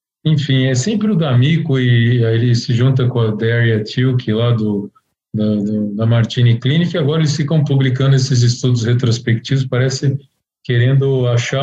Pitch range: 120-140 Hz